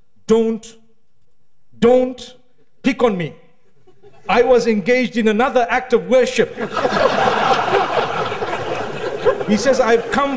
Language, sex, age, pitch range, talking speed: English, male, 50-69, 210-265 Hz, 100 wpm